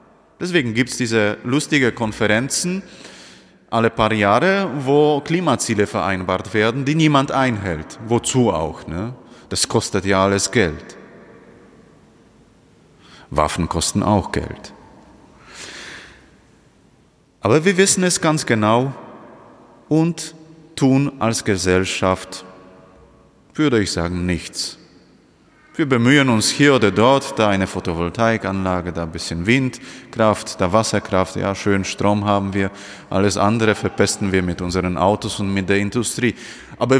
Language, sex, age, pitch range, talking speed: German, male, 30-49, 95-140 Hz, 120 wpm